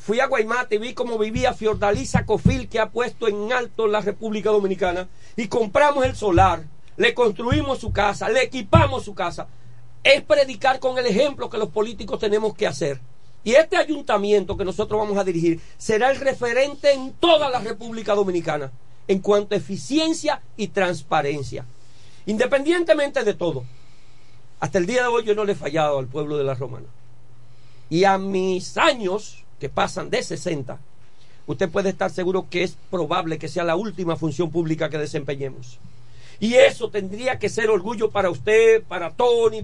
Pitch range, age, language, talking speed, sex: 140-230 Hz, 40-59, Spanish, 170 wpm, male